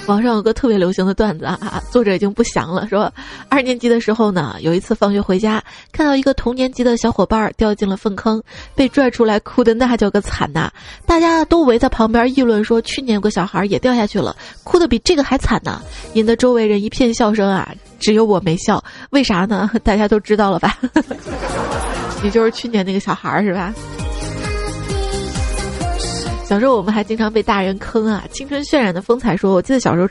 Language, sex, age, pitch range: Chinese, female, 20-39, 200-245 Hz